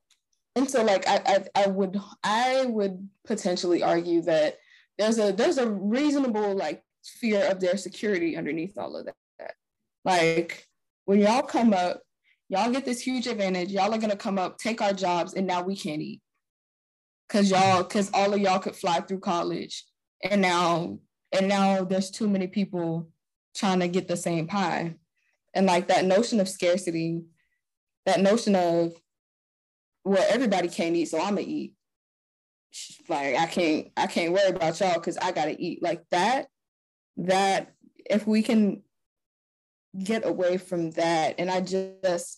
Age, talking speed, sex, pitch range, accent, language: 20-39, 160 wpm, female, 175-210 Hz, American, English